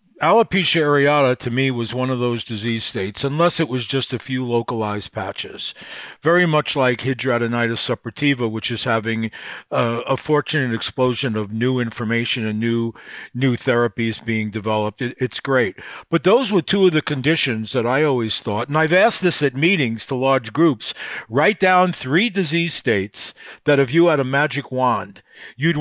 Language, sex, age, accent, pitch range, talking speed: English, male, 50-69, American, 120-160 Hz, 175 wpm